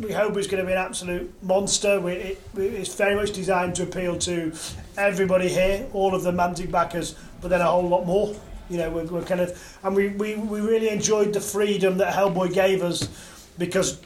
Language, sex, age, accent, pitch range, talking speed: English, male, 30-49, British, 165-190 Hz, 205 wpm